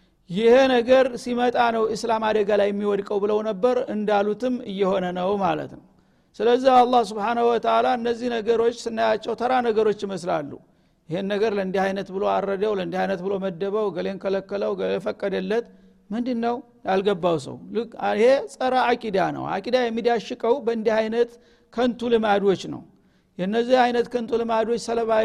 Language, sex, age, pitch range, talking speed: Amharic, male, 60-79, 205-240 Hz, 130 wpm